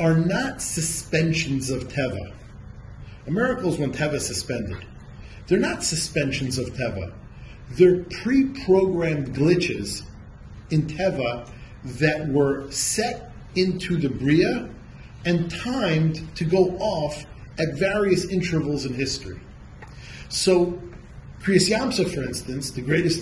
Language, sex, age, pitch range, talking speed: English, male, 40-59, 125-180 Hz, 110 wpm